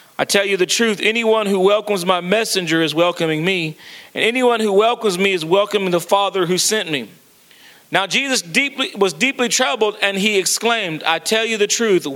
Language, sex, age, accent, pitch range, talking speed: English, male, 40-59, American, 180-230 Hz, 190 wpm